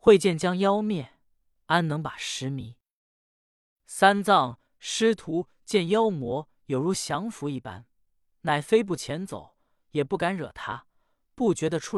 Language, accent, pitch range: Chinese, native, 140-200 Hz